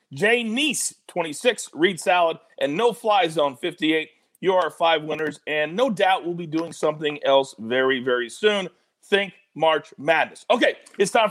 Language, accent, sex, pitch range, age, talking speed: English, American, male, 160-220 Hz, 40-59, 165 wpm